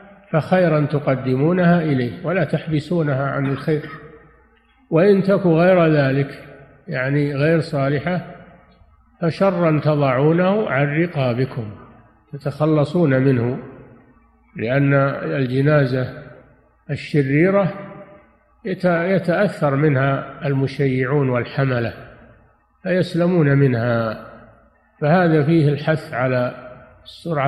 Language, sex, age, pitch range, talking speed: Arabic, male, 50-69, 135-155 Hz, 75 wpm